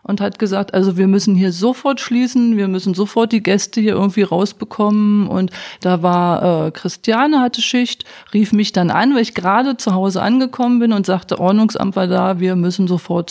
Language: German